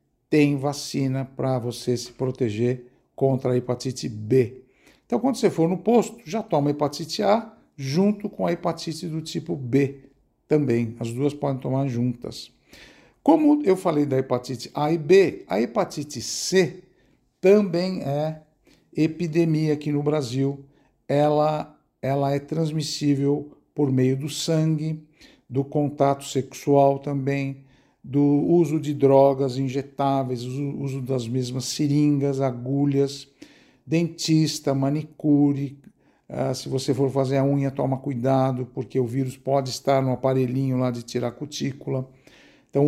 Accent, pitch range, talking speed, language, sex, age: Brazilian, 130-155 Hz, 135 wpm, Portuguese, male, 60-79